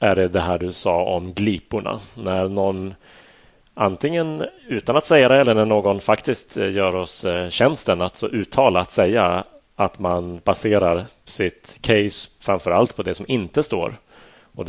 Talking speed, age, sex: 160 wpm, 30-49, male